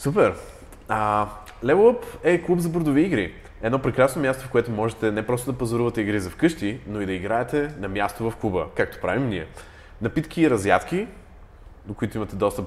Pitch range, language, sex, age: 90-130 Hz, Bulgarian, male, 20-39